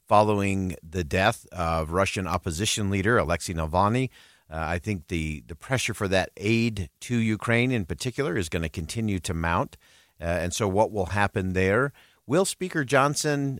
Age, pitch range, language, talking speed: 50-69, 85-115 Hz, English, 170 wpm